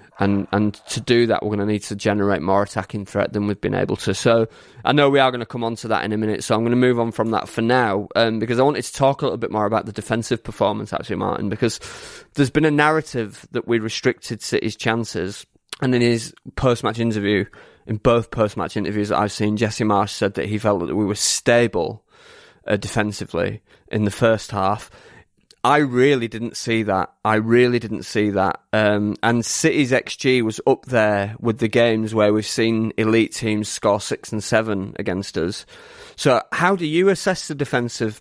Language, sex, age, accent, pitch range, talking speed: English, male, 20-39, British, 105-120 Hz, 210 wpm